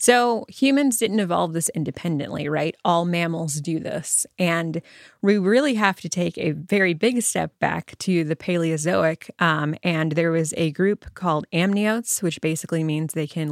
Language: English